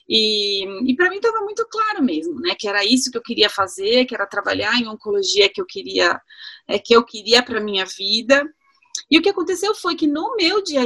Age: 30-49